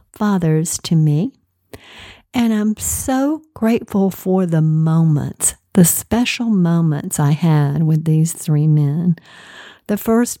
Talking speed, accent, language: 120 wpm, American, English